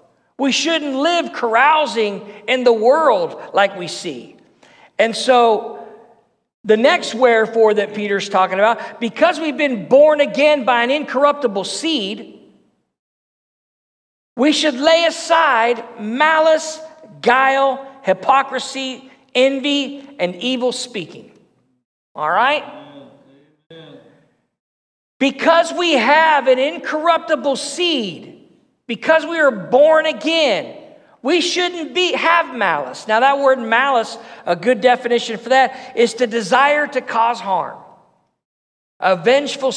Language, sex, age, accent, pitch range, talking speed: English, male, 50-69, American, 215-295 Hz, 110 wpm